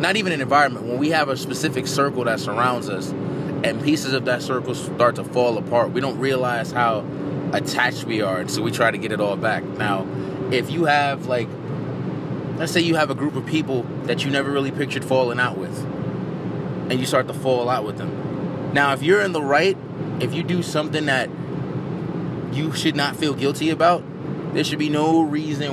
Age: 20-39